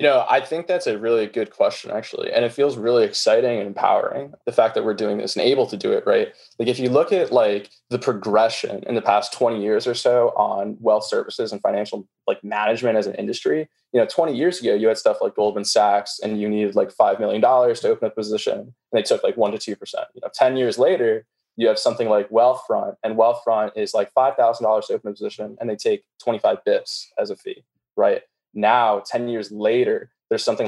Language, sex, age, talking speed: English, male, 20-39, 225 wpm